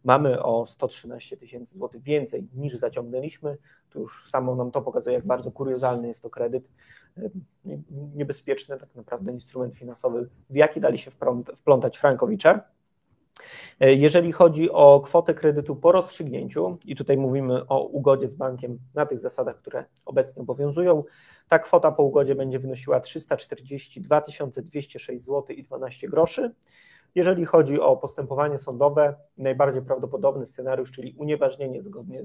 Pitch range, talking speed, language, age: 130-165 Hz, 130 wpm, Polish, 30-49